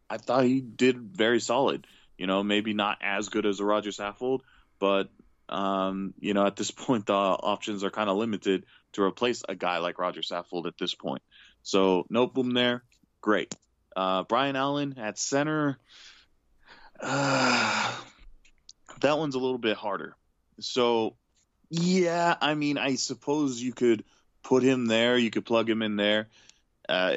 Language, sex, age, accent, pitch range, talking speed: English, male, 20-39, American, 95-125 Hz, 165 wpm